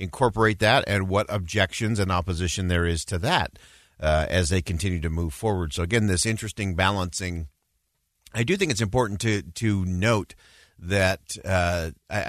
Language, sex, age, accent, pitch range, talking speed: English, male, 50-69, American, 90-110 Hz, 165 wpm